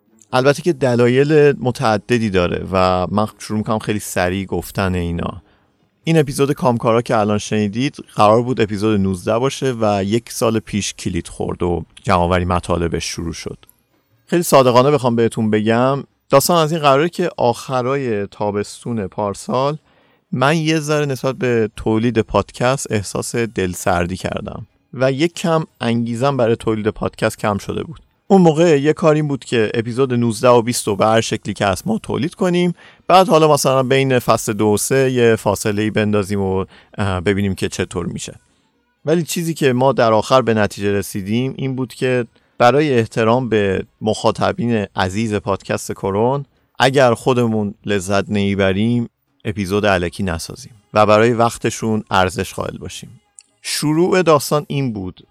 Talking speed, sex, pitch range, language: 150 wpm, male, 105-135 Hz, Persian